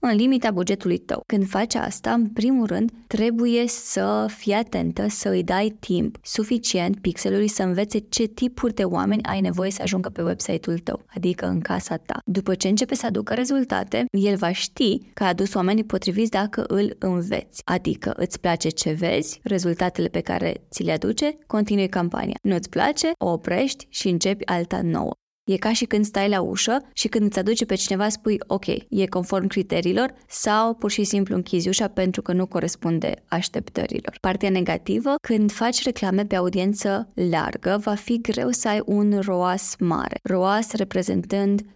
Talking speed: 175 wpm